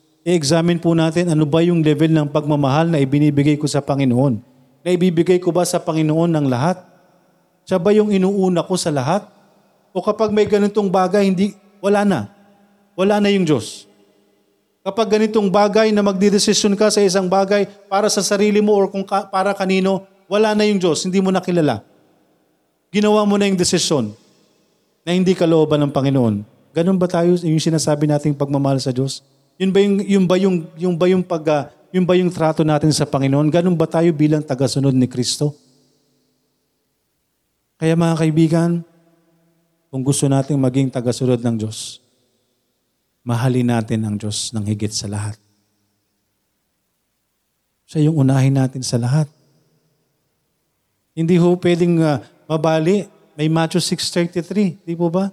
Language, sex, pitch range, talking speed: Filipino, male, 140-190 Hz, 140 wpm